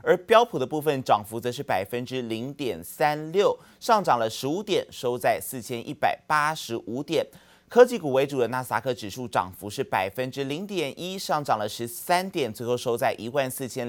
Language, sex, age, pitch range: Chinese, male, 30-49, 120-155 Hz